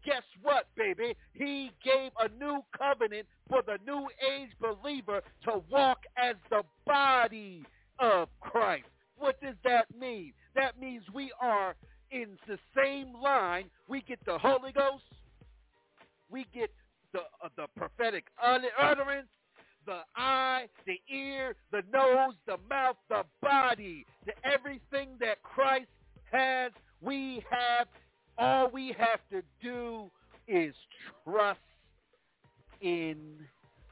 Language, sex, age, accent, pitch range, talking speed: English, male, 50-69, American, 215-275 Hz, 120 wpm